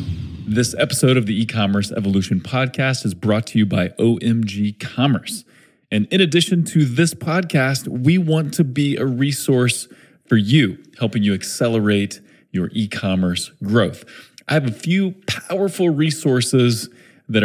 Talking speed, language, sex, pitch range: 150 wpm, English, male, 105-140 Hz